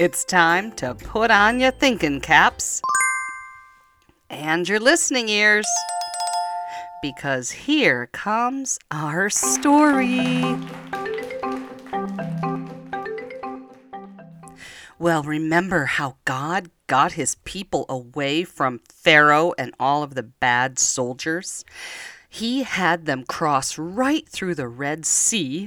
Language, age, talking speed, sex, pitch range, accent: English, 40-59, 100 wpm, female, 135-195 Hz, American